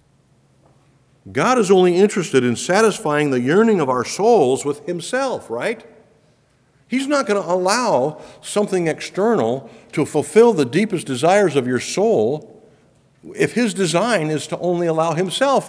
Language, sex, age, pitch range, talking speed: English, male, 50-69, 115-170 Hz, 140 wpm